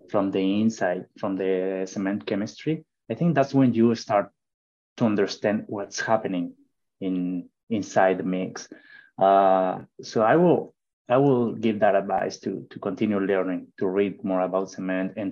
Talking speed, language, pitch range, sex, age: 155 wpm, English, 95-115 Hz, male, 20-39